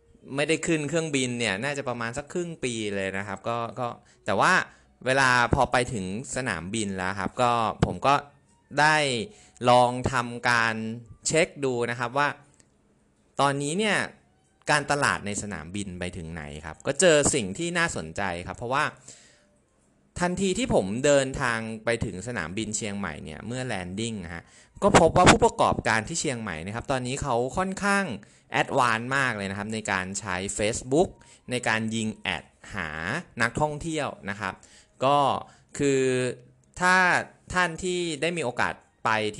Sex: male